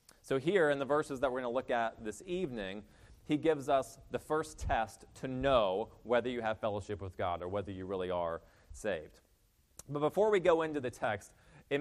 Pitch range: 105-155 Hz